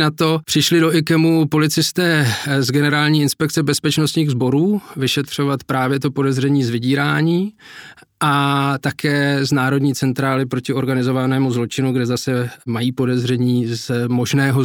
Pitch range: 125-140 Hz